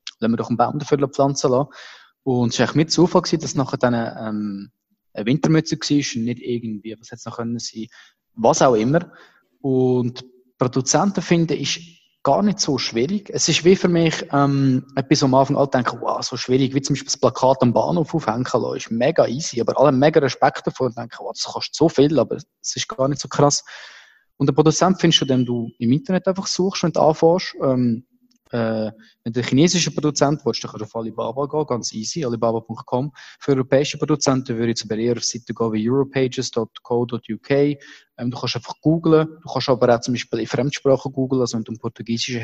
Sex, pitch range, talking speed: male, 120-145 Hz, 205 wpm